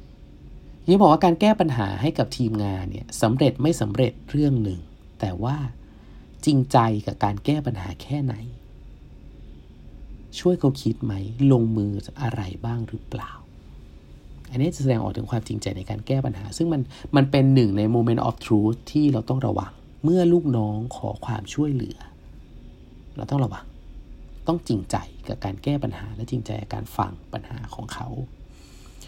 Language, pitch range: English, 100-135 Hz